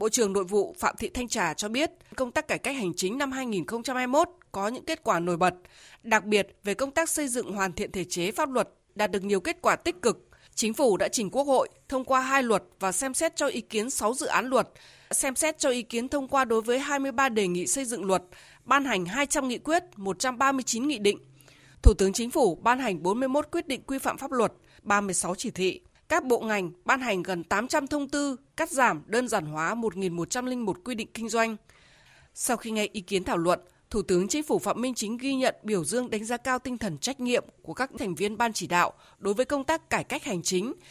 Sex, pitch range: female, 195-265 Hz